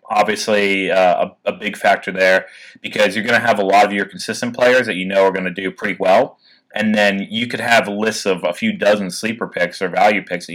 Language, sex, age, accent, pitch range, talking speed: English, male, 30-49, American, 95-115 Hz, 245 wpm